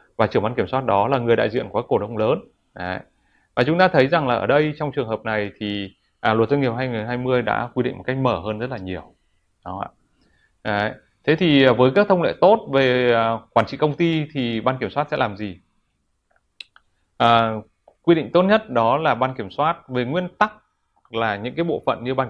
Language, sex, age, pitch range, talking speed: Vietnamese, male, 20-39, 105-135 Hz, 225 wpm